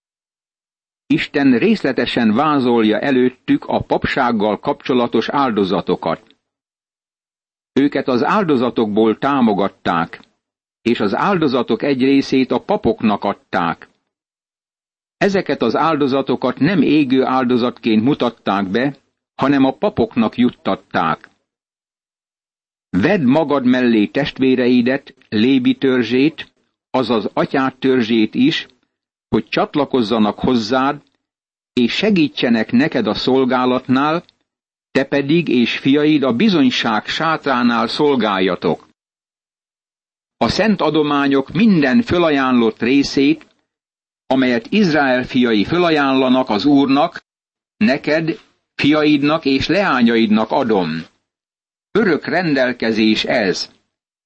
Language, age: Hungarian, 60-79